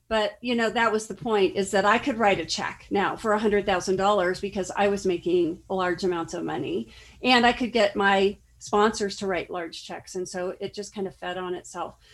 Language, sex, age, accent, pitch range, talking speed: English, female, 40-59, American, 185-225 Hz, 215 wpm